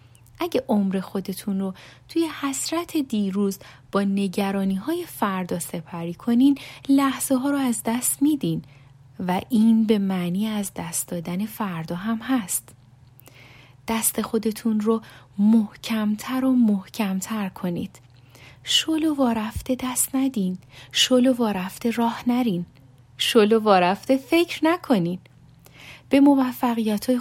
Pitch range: 180-255 Hz